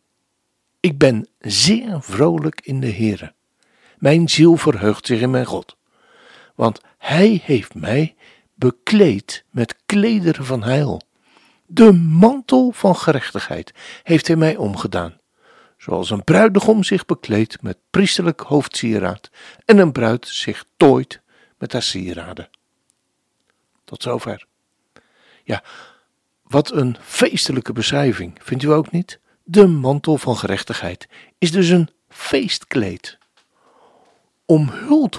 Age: 60-79